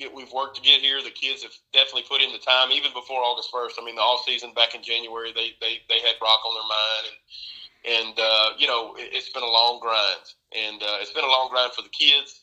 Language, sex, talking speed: English, male, 255 wpm